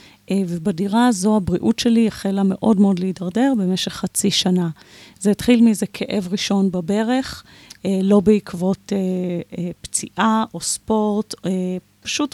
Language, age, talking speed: Hebrew, 30-49, 130 wpm